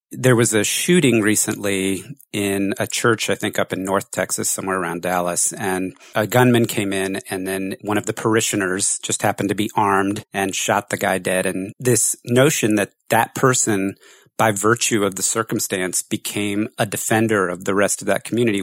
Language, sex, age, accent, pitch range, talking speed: English, male, 40-59, American, 95-115 Hz, 185 wpm